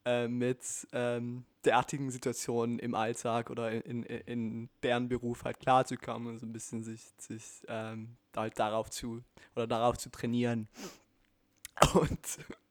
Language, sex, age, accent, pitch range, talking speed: German, male, 20-39, German, 115-140 Hz, 145 wpm